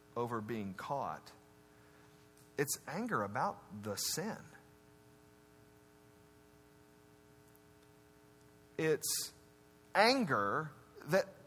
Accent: American